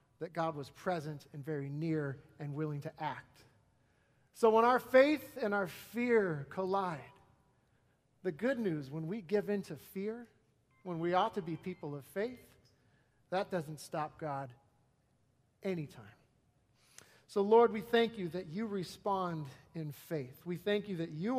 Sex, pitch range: male, 135-200 Hz